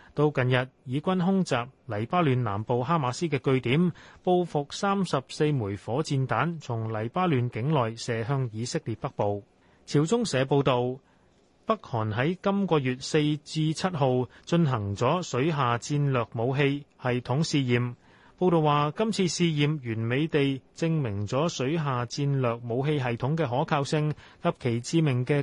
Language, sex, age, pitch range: Chinese, male, 30-49, 125-170 Hz